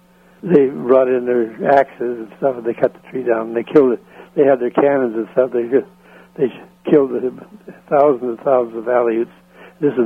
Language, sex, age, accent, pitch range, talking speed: English, male, 60-79, American, 120-140 Hz, 215 wpm